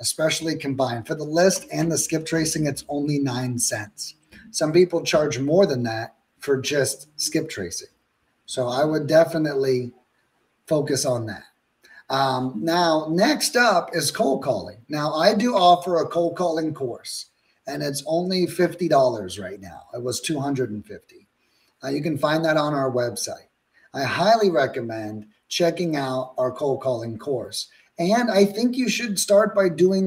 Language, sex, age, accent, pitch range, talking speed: English, male, 30-49, American, 145-215 Hz, 160 wpm